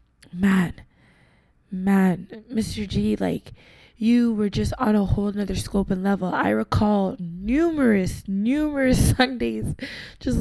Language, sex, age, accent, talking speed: English, female, 20-39, American, 120 wpm